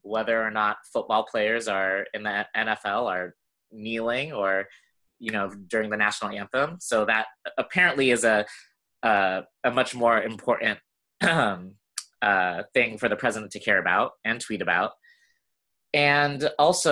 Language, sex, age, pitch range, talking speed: English, male, 20-39, 100-125 Hz, 150 wpm